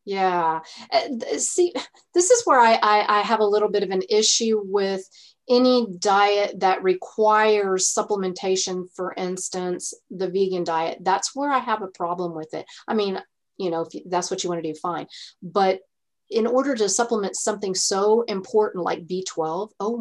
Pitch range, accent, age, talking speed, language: 180-220 Hz, American, 30-49, 170 wpm, English